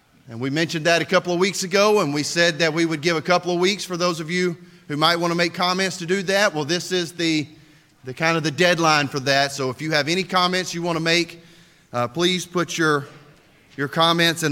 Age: 30-49